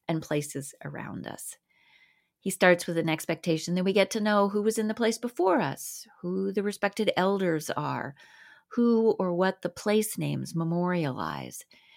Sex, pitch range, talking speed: female, 160-200 Hz, 165 wpm